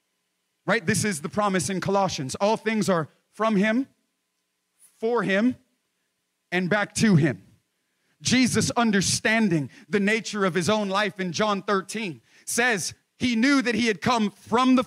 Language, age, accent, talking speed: English, 30-49, American, 155 wpm